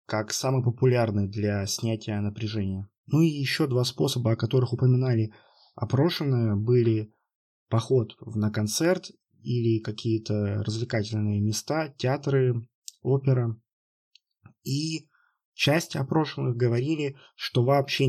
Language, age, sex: Russian, 20-39, male